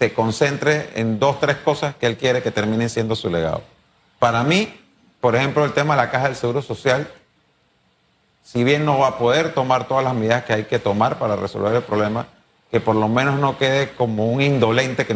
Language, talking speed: Spanish, 215 wpm